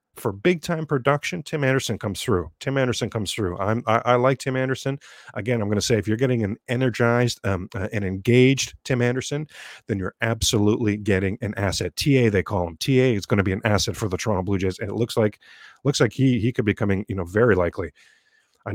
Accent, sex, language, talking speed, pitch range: American, male, English, 230 wpm, 110-140 Hz